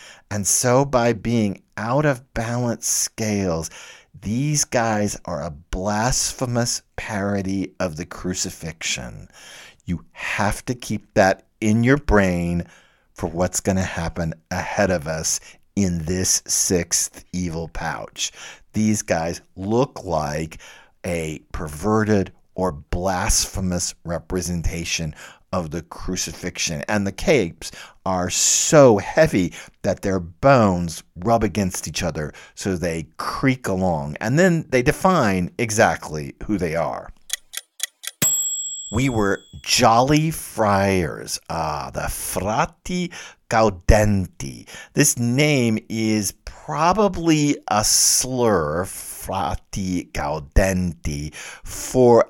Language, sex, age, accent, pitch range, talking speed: English, male, 50-69, American, 90-115 Hz, 105 wpm